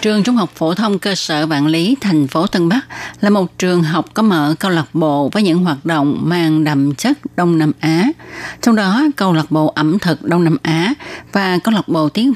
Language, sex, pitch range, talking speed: Vietnamese, female, 155-195 Hz, 230 wpm